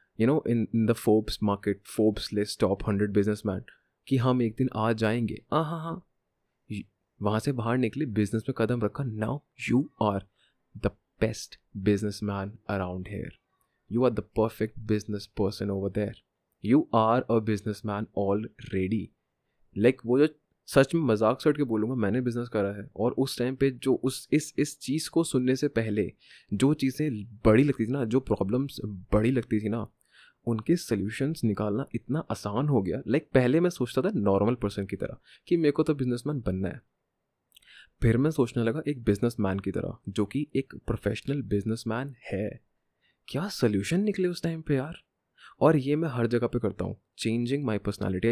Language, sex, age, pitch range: Hindi, male, 30-49, 105-135 Hz